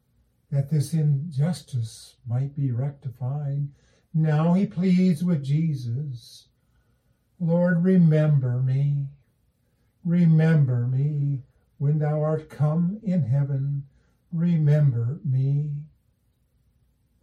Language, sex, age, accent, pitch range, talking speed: English, male, 50-69, American, 135-160 Hz, 85 wpm